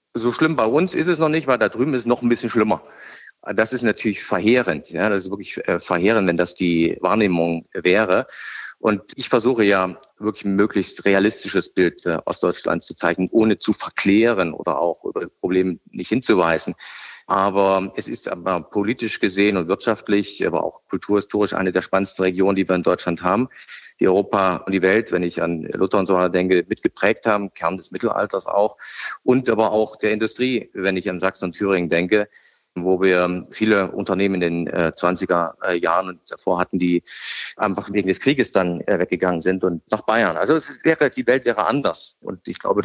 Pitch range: 90-115 Hz